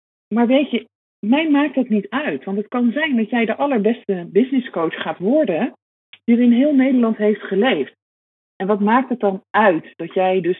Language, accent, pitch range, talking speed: Dutch, Dutch, 170-225 Hz, 200 wpm